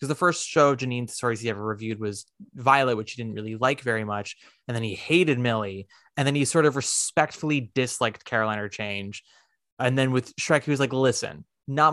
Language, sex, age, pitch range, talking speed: English, male, 20-39, 115-145 Hz, 205 wpm